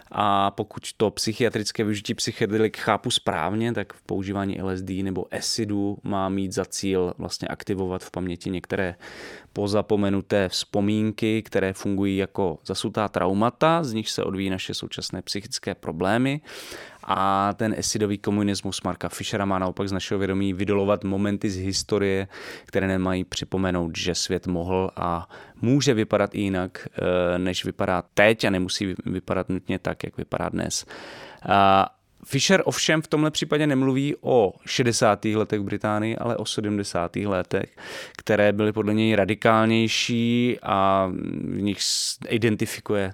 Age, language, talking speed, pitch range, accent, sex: 20-39, Czech, 135 wpm, 95-110 Hz, native, male